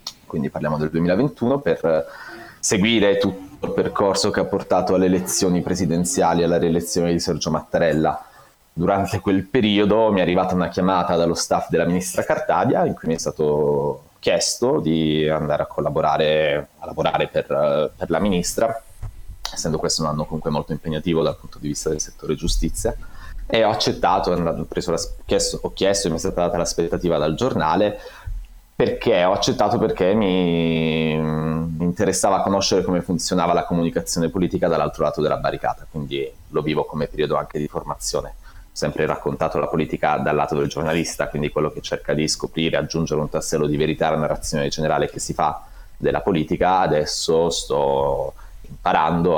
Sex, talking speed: male, 165 wpm